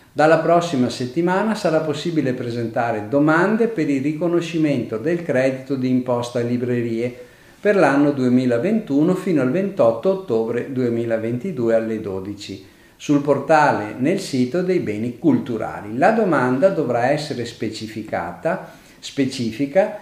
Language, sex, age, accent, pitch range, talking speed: Italian, male, 50-69, native, 115-170 Hz, 115 wpm